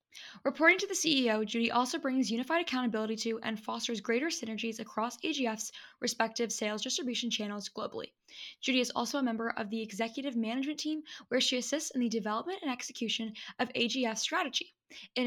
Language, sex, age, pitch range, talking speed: English, female, 10-29, 220-265 Hz, 170 wpm